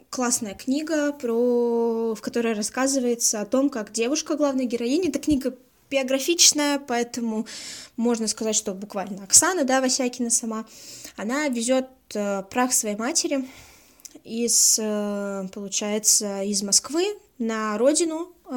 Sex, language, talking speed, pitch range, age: female, Russian, 115 wpm, 220-270 Hz, 20-39